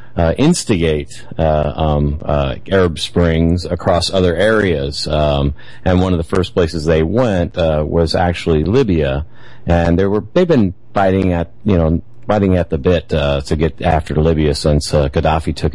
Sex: male